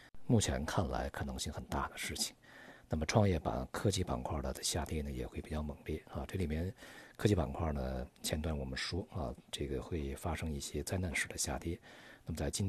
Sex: male